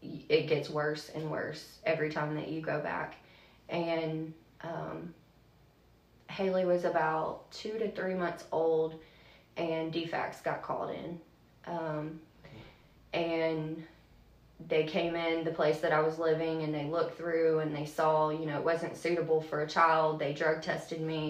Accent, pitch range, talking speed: American, 155-175 Hz, 160 wpm